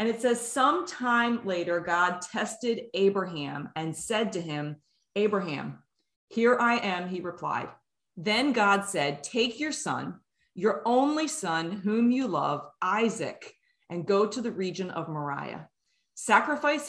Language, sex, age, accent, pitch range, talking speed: English, female, 30-49, American, 165-225 Hz, 140 wpm